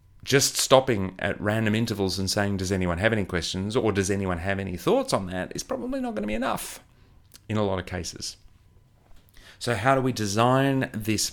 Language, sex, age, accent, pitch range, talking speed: English, male, 30-49, Australian, 95-120 Hz, 200 wpm